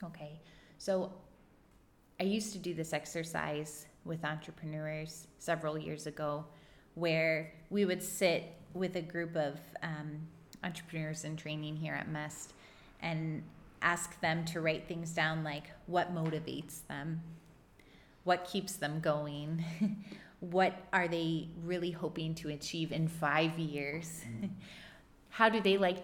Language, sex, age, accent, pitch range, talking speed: English, female, 30-49, American, 155-185 Hz, 130 wpm